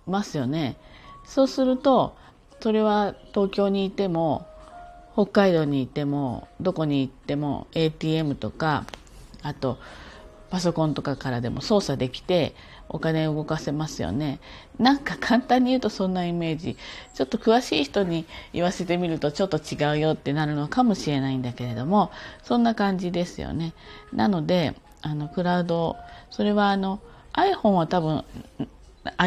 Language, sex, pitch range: Japanese, female, 145-200 Hz